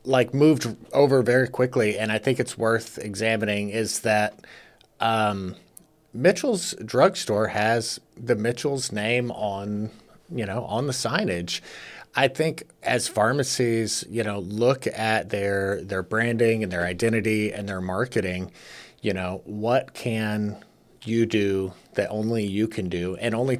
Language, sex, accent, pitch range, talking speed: English, male, American, 100-120 Hz, 140 wpm